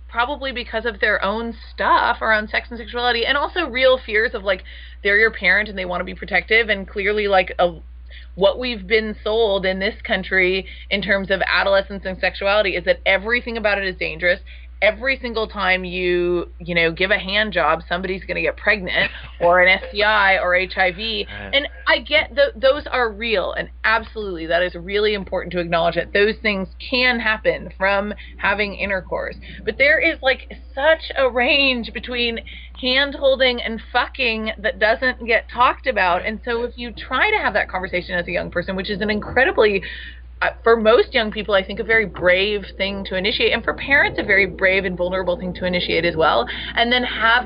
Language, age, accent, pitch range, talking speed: English, 30-49, American, 185-235 Hz, 190 wpm